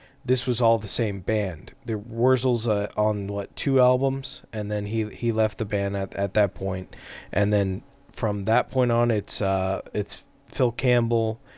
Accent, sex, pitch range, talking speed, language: American, male, 100-125 Hz, 180 wpm, English